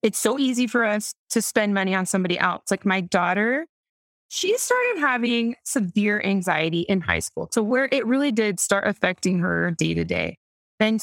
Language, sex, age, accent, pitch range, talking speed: English, female, 20-39, American, 195-265 Hz, 185 wpm